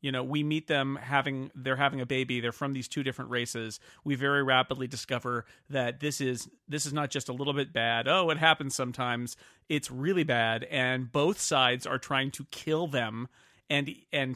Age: 40-59